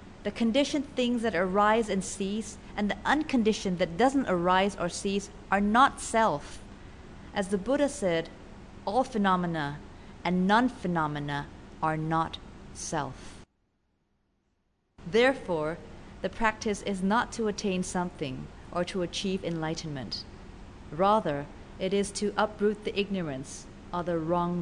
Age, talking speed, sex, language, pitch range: 30-49, 125 wpm, female, English, 150-210 Hz